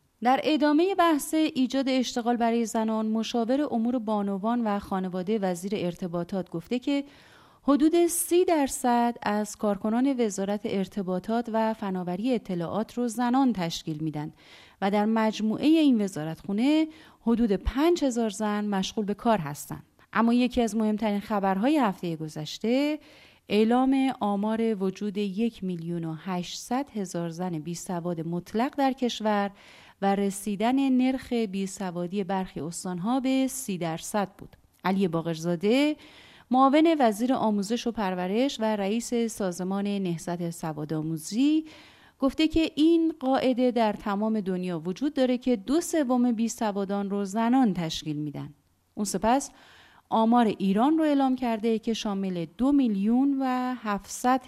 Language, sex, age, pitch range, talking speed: Persian, female, 30-49, 190-255 Hz, 130 wpm